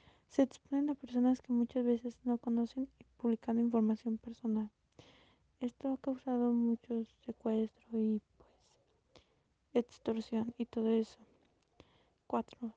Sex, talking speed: female, 120 wpm